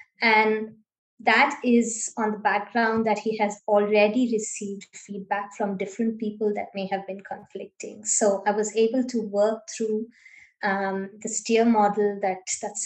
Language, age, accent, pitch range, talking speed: English, 20-39, Indian, 200-225 Hz, 150 wpm